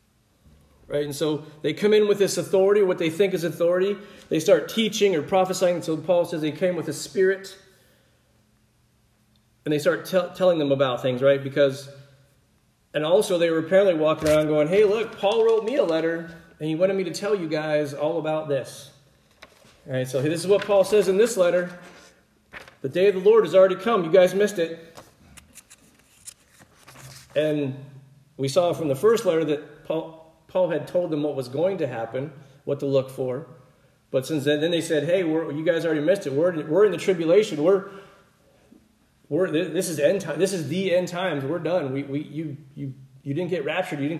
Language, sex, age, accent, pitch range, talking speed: English, male, 40-59, American, 145-190 Hz, 200 wpm